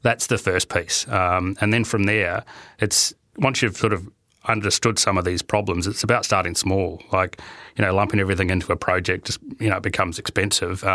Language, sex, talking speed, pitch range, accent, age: English, male, 195 wpm, 90-105 Hz, Australian, 30-49